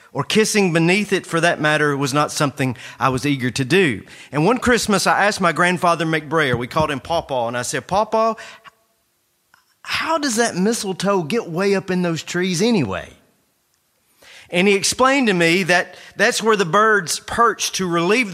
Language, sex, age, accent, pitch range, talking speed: English, male, 40-59, American, 145-200 Hz, 180 wpm